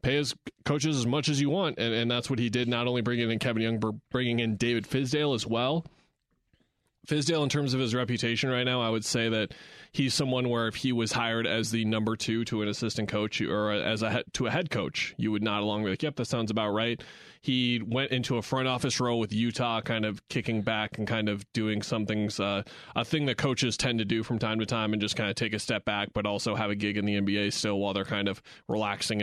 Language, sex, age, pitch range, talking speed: English, male, 20-39, 105-120 Hz, 260 wpm